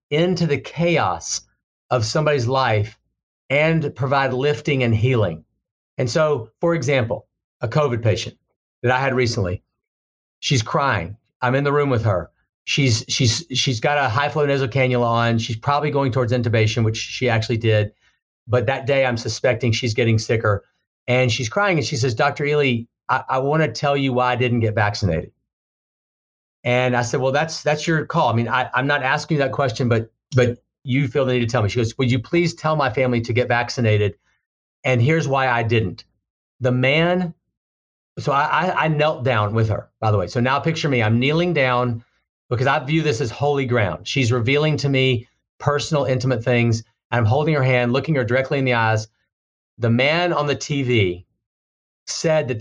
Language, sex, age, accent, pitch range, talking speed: English, male, 40-59, American, 115-145 Hz, 190 wpm